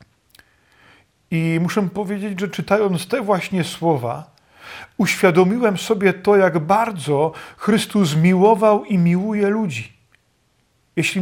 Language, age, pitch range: Czech, 40-59, 155-210 Hz